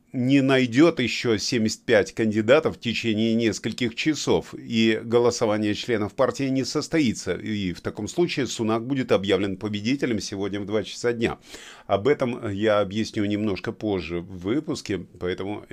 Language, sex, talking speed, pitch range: Russian, male, 140 wpm, 105-125 Hz